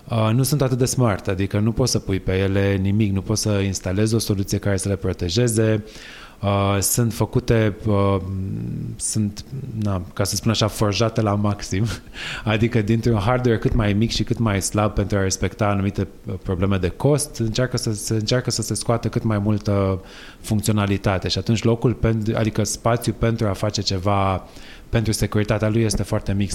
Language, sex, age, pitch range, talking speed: Romanian, male, 20-39, 100-115 Hz, 170 wpm